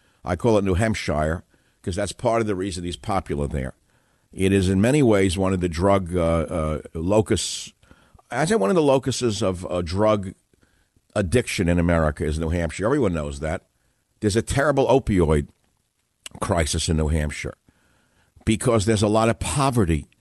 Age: 60-79